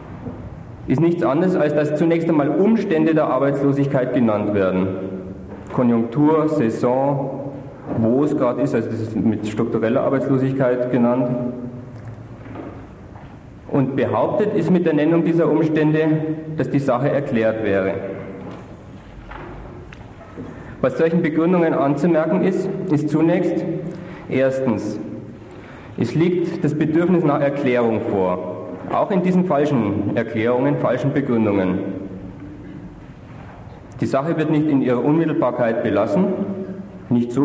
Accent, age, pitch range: German, 50-69, 115-155 Hz